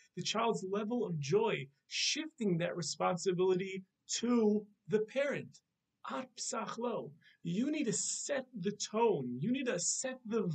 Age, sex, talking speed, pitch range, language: 40-59, male, 125 wpm, 165-225 Hz, English